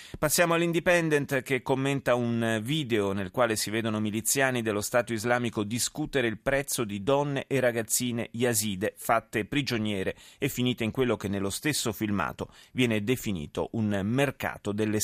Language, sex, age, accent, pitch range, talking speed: Italian, male, 30-49, native, 105-135 Hz, 150 wpm